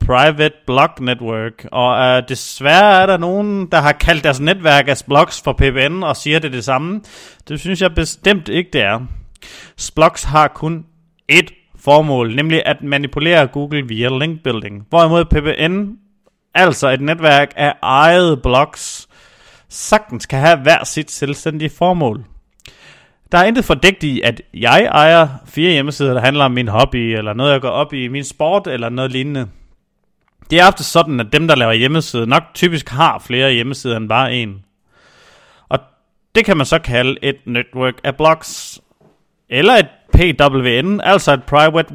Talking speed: 165 wpm